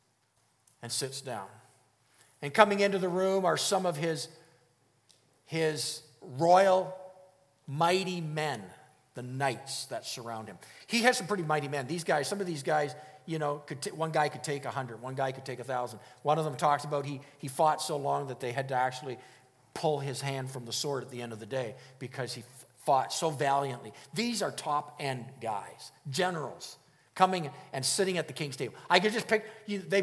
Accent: American